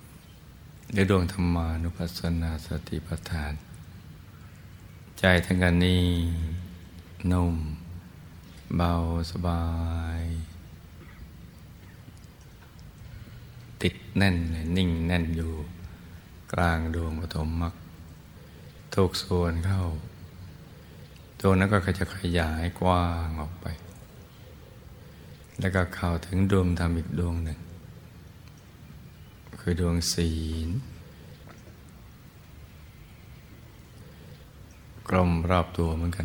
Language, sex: Thai, male